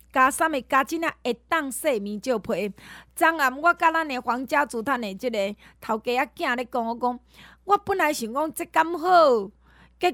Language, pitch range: Chinese, 230-325 Hz